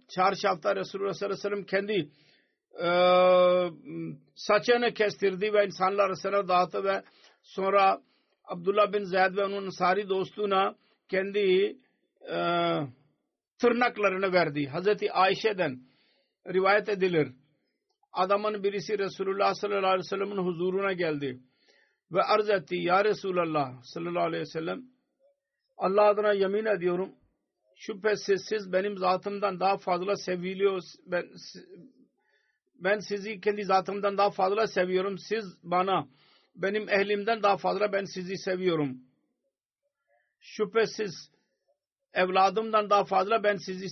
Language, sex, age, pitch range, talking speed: Turkish, male, 50-69, 180-210 Hz, 105 wpm